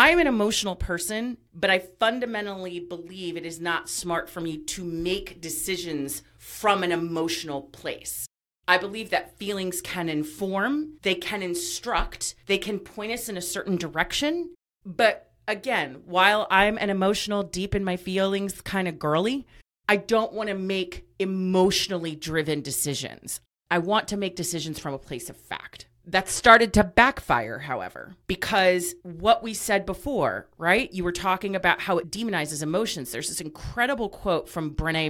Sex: female